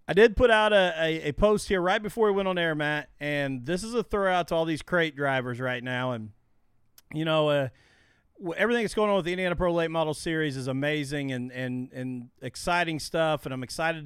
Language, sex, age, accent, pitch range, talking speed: English, male, 40-59, American, 130-170 Hz, 220 wpm